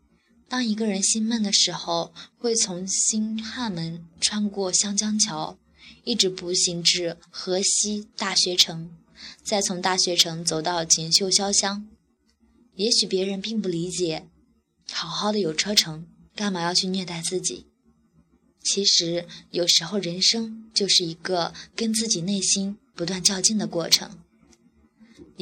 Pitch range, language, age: 175-205 Hz, Chinese, 20-39